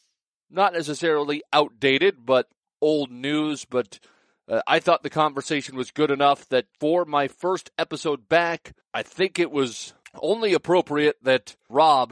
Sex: male